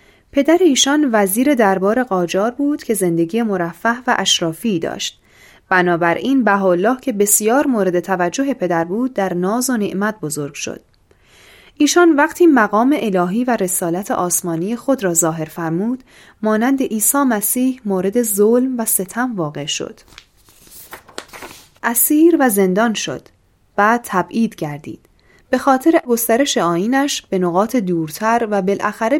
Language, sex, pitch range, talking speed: Persian, female, 185-265 Hz, 125 wpm